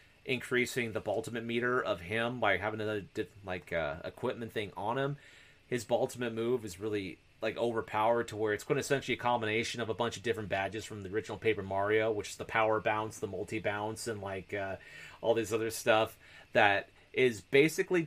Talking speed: 190 wpm